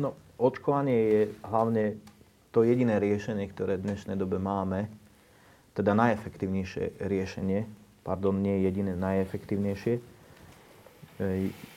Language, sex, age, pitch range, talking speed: Slovak, male, 30-49, 95-105 Hz, 105 wpm